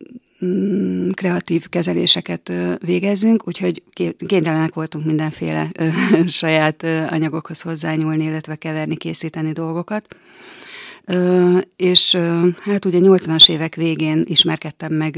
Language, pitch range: Hungarian, 160-180 Hz